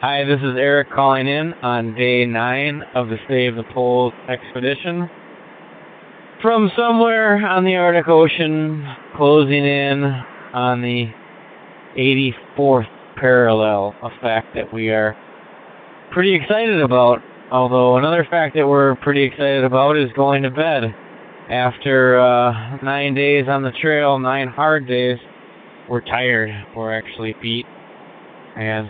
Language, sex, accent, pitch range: English, male, American, 120-140 Hz